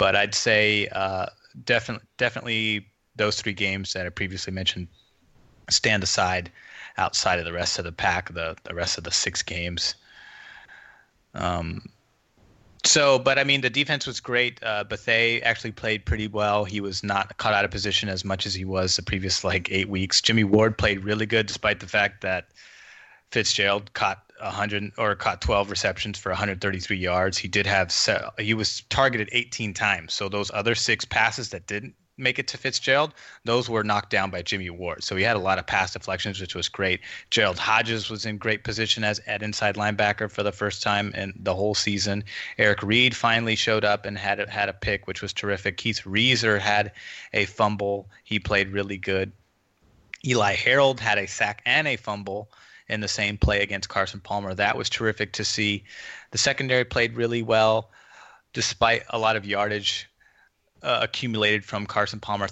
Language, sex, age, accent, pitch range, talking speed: English, male, 30-49, American, 100-110 Hz, 185 wpm